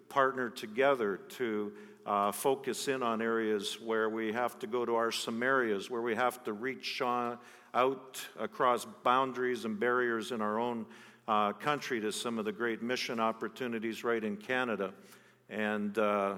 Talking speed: 160 wpm